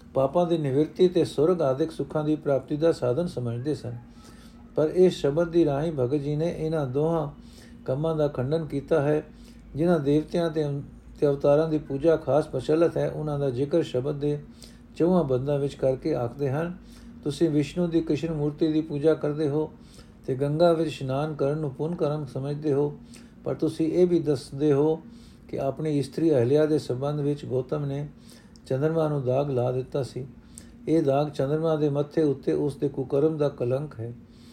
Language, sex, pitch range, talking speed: Punjabi, male, 135-160 Hz, 155 wpm